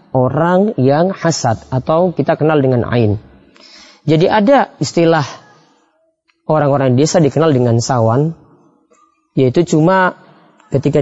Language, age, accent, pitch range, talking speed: Indonesian, 20-39, native, 130-170 Hz, 105 wpm